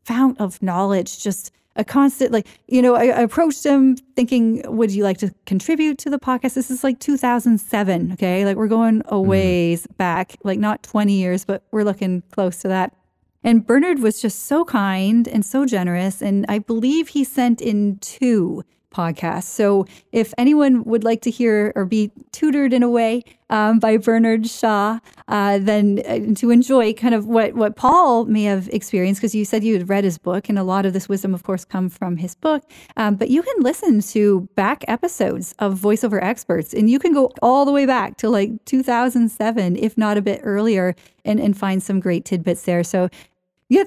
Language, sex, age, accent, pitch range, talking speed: English, female, 30-49, American, 195-245 Hz, 200 wpm